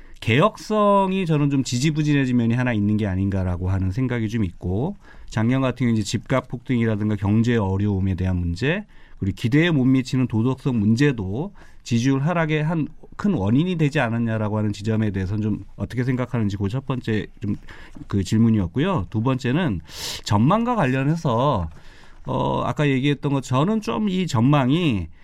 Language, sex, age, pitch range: Korean, male, 30-49, 105-150 Hz